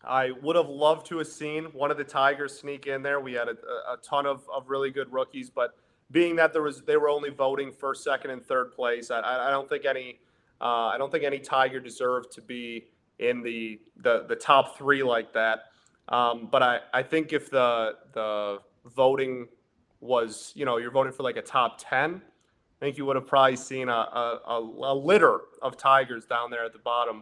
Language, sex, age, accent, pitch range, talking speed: English, male, 30-49, American, 120-145 Hz, 215 wpm